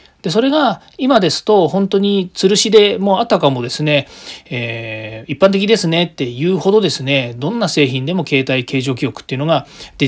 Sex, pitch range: male, 130-200 Hz